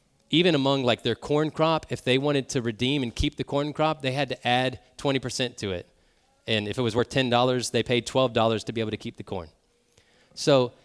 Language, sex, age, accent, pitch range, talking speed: English, male, 30-49, American, 115-160 Hz, 220 wpm